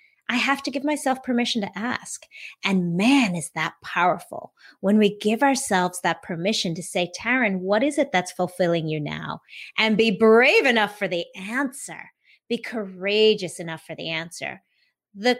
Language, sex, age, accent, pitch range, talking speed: English, female, 30-49, American, 185-285 Hz, 170 wpm